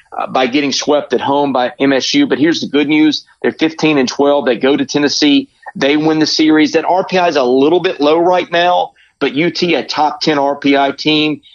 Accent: American